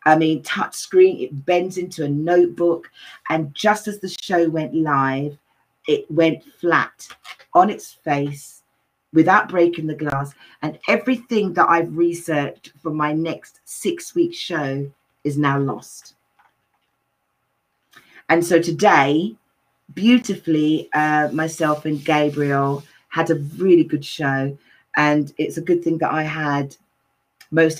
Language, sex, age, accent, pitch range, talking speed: English, female, 40-59, British, 150-235 Hz, 135 wpm